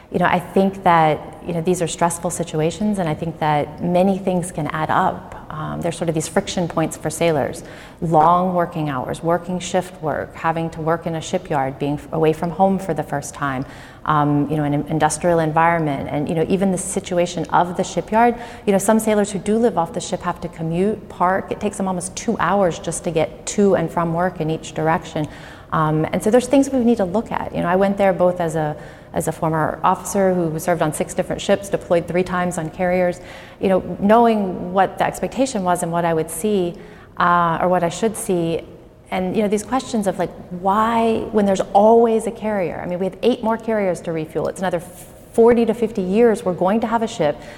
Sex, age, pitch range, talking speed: female, 30-49, 165-200 Hz, 225 wpm